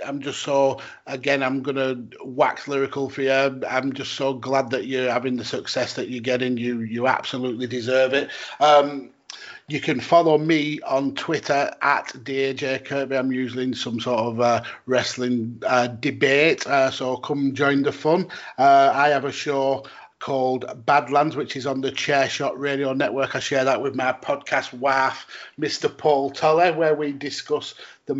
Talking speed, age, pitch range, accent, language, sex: 175 wpm, 30-49, 125-145 Hz, British, English, male